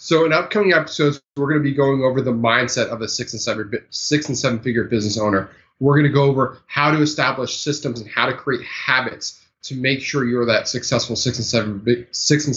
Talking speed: 200 wpm